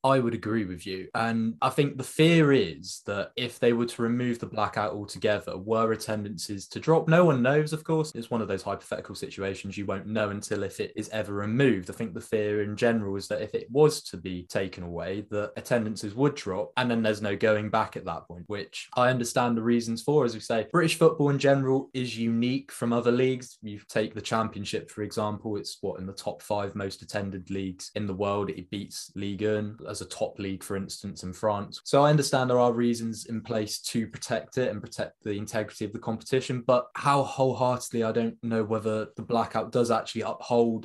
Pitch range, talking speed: 100-125 Hz, 220 wpm